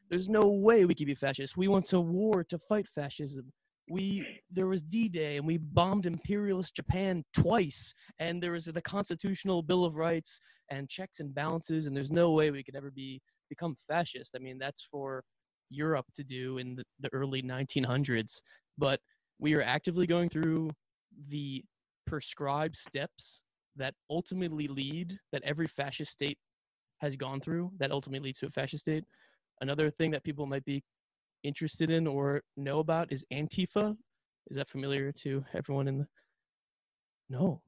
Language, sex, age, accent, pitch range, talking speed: English, male, 20-39, American, 140-175 Hz, 165 wpm